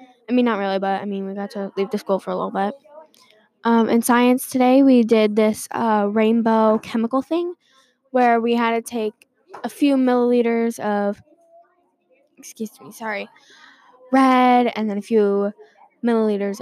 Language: English